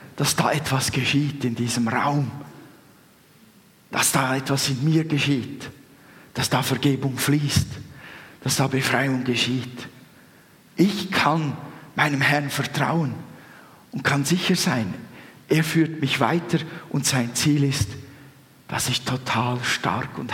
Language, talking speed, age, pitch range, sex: German, 125 wpm, 50-69, 130-155 Hz, male